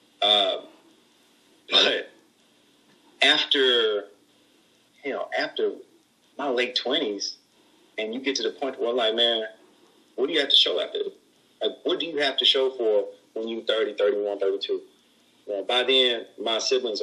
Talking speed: 155 wpm